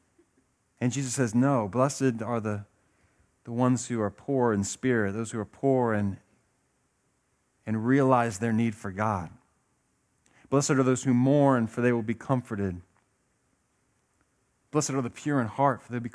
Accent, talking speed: American, 165 wpm